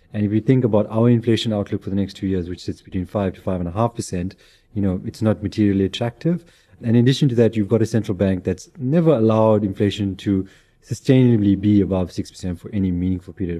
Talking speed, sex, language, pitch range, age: 235 wpm, male, English, 95-115 Hz, 30-49